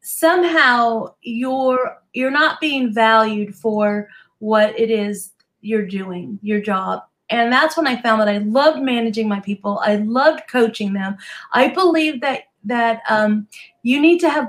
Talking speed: 155 wpm